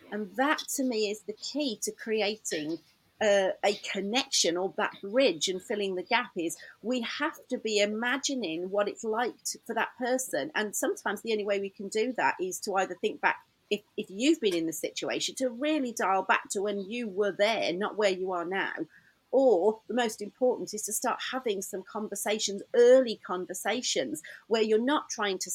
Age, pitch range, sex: 40-59, 200-250 Hz, female